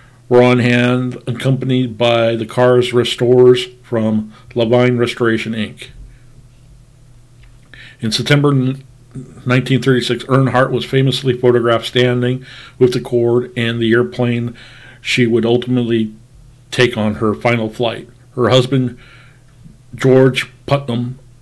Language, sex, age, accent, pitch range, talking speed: English, male, 50-69, American, 120-125 Hz, 105 wpm